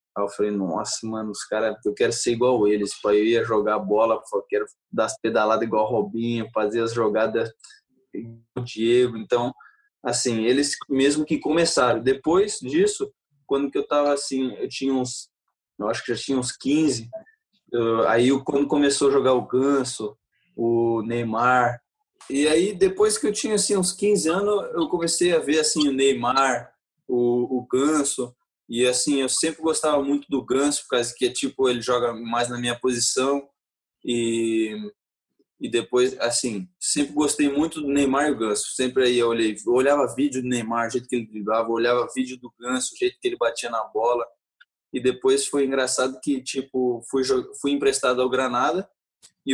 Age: 20-39